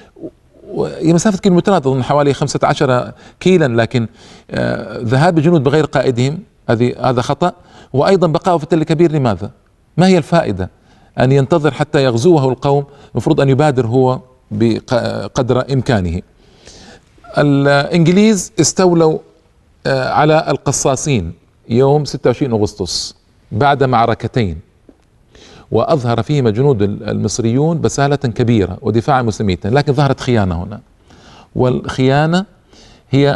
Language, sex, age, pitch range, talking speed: Arabic, male, 50-69, 115-145 Hz, 105 wpm